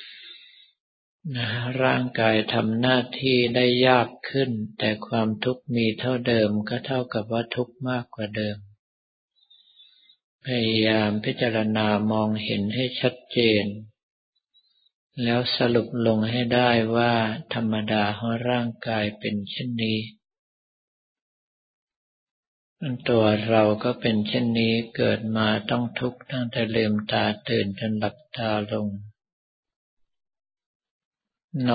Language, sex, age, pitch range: Thai, male, 50-69, 110-125 Hz